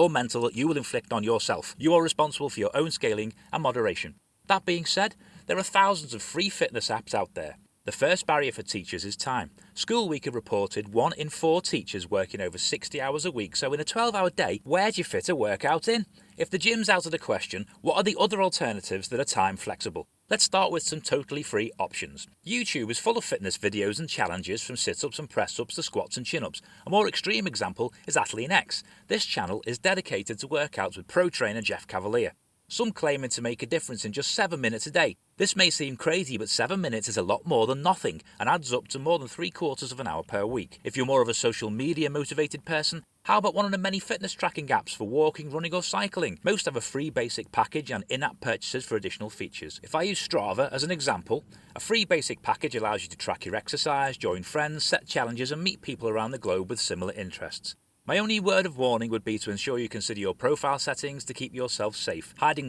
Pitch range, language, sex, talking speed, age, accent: 115-180 Hz, English, male, 230 wpm, 30-49, British